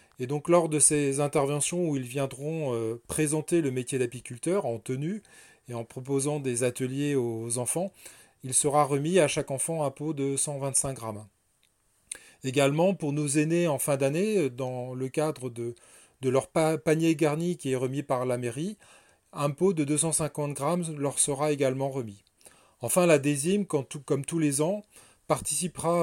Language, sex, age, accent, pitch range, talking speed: French, male, 30-49, French, 130-160 Hz, 165 wpm